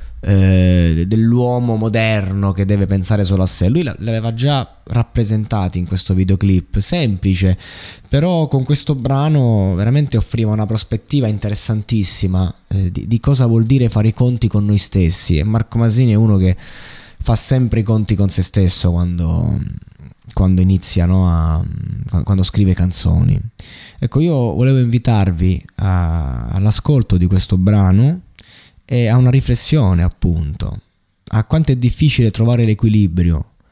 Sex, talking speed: male, 135 wpm